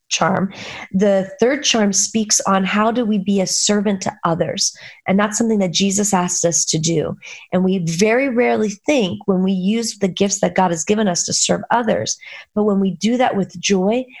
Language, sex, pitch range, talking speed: English, female, 185-220 Hz, 205 wpm